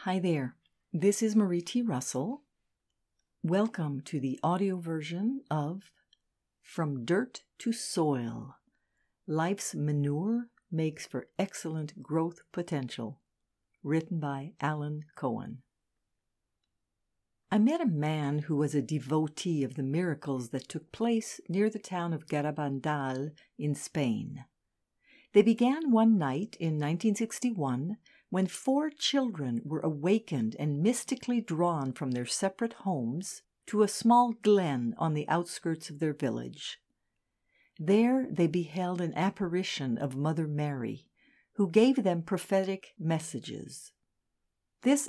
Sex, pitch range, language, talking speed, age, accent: female, 150-210 Hz, English, 120 wpm, 60-79, American